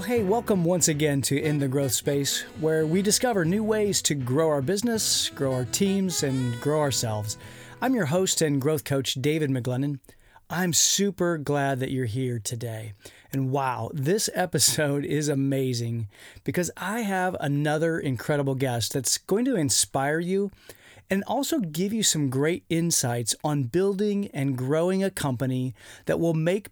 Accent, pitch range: American, 130-180 Hz